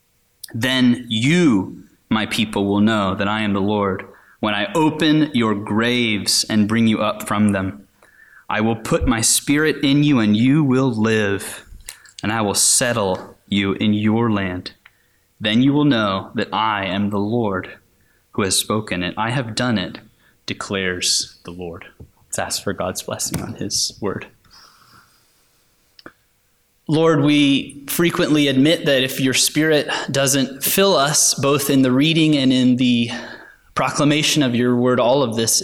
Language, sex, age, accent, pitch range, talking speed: English, male, 20-39, American, 105-130 Hz, 160 wpm